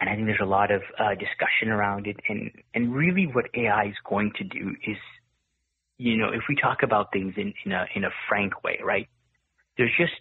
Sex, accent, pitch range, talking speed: male, American, 105-135 Hz, 210 wpm